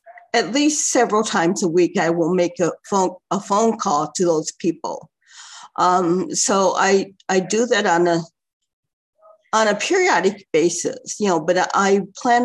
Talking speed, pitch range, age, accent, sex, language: 165 wpm, 175-225 Hz, 50-69, American, female, English